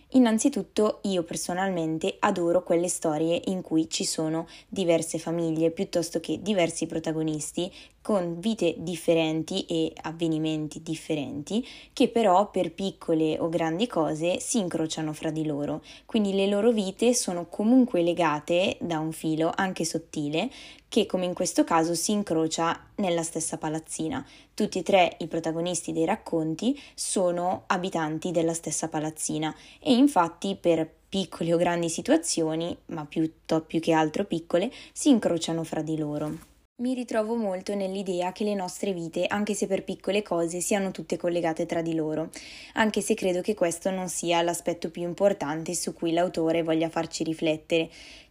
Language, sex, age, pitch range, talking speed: Italian, female, 20-39, 160-195 Hz, 150 wpm